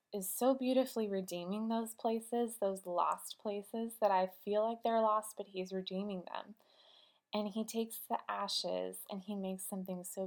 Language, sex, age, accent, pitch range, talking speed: English, female, 20-39, American, 185-225 Hz, 170 wpm